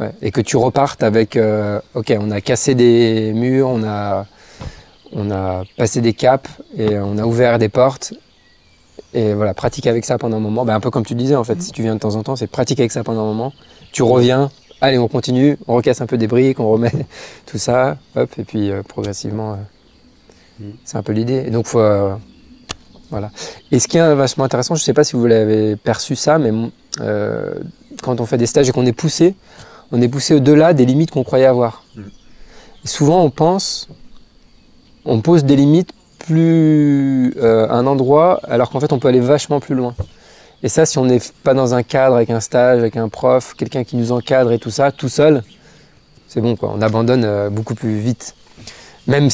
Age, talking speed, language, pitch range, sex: 20-39, 215 wpm, French, 110-135 Hz, male